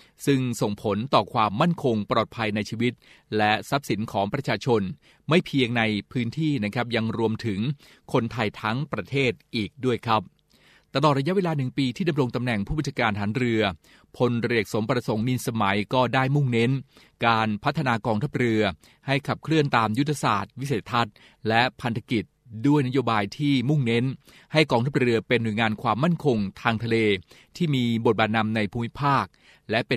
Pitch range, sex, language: 110-135 Hz, male, Thai